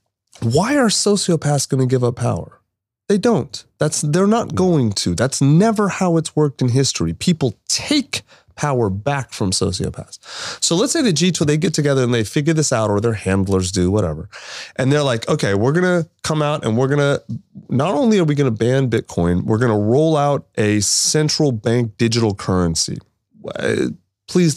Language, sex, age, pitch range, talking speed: English, male, 30-49, 110-155 Hz, 190 wpm